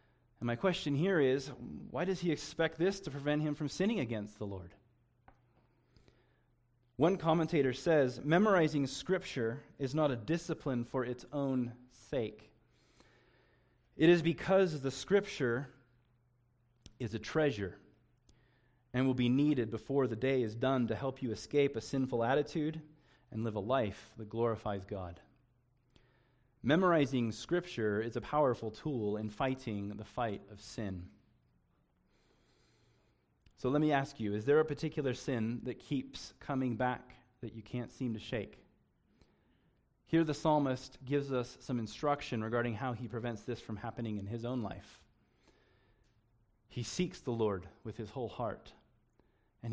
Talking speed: 145 wpm